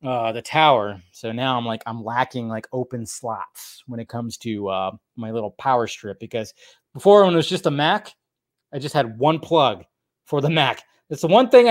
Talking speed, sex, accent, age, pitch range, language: 210 wpm, male, American, 20-39, 125-175 Hz, English